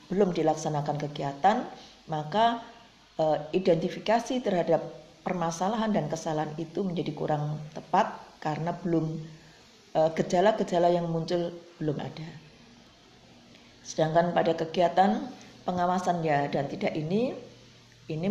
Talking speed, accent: 100 wpm, native